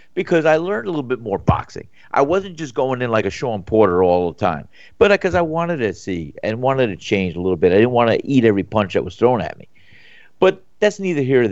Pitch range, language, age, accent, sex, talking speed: 125-185 Hz, English, 50-69, American, male, 260 wpm